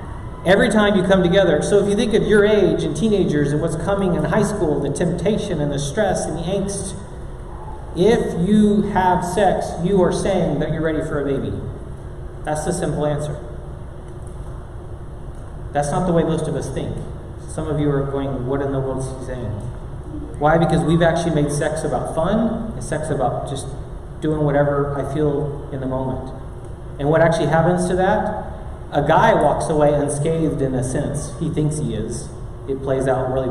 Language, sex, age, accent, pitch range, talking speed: English, male, 40-59, American, 130-165 Hz, 190 wpm